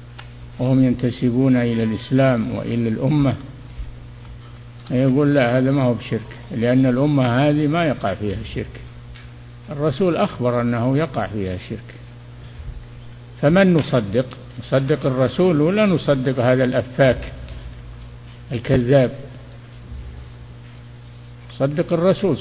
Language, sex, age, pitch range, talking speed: Polish, male, 60-79, 120-135 Hz, 95 wpm